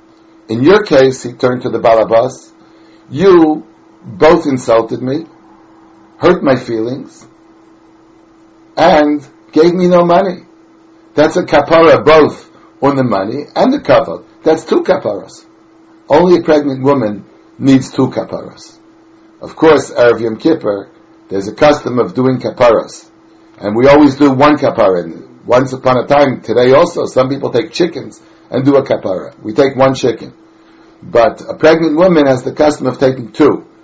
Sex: male